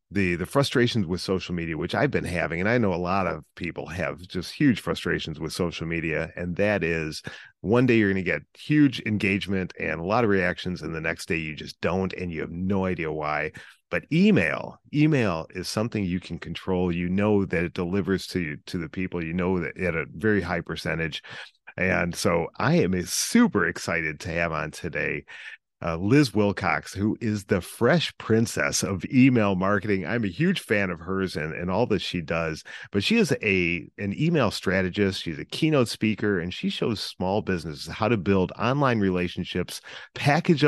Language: English